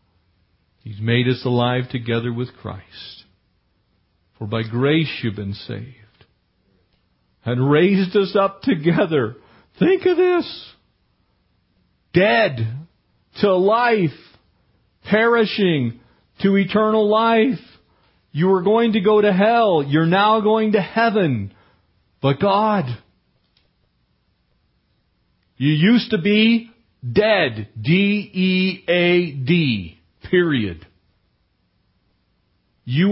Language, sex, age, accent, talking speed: English, male, 40-59, American, 90 wpm